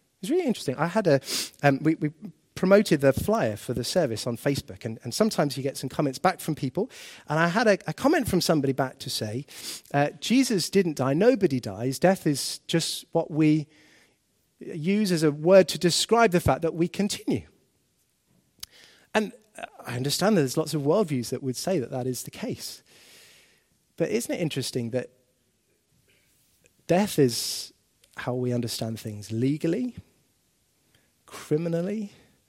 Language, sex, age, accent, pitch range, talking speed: English, male, 30-49, British, 130-185 Hz, 165 wpm